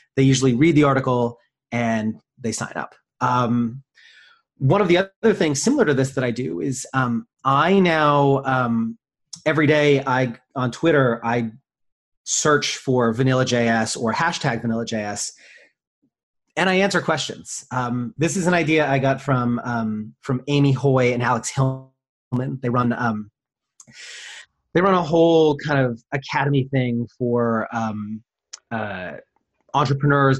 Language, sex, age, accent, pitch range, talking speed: English, male, 30-49, American, 120-145 Hz, 145 wpm